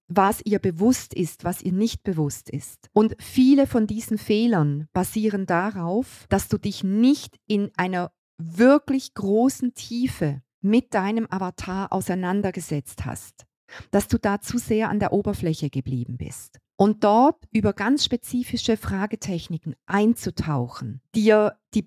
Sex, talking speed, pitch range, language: female, 135 wpm, 170-220 Hz, German